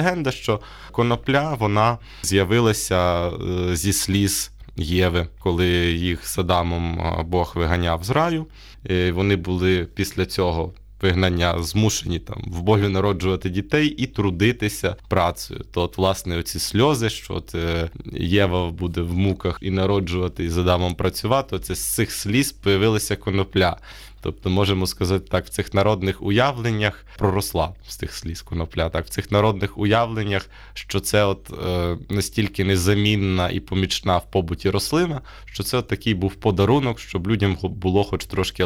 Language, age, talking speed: Ukrainian, 20-39, 145 wpm